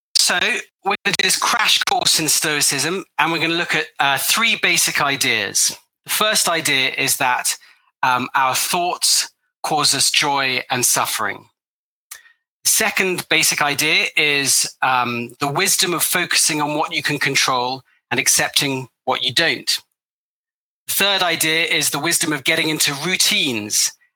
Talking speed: 155 wpm